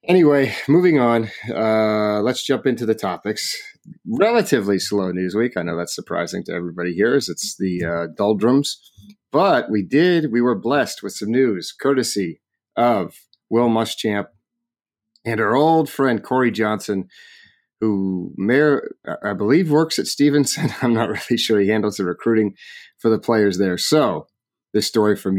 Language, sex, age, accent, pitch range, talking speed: English, male, 30-49, American, 95-120 Hz, 155 wpm